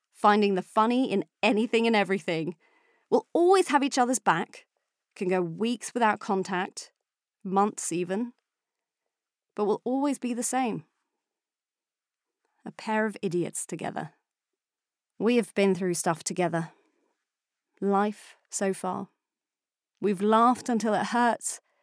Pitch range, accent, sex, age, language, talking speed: 180-240 Hz, British, female, 30-49, English, 125 wpm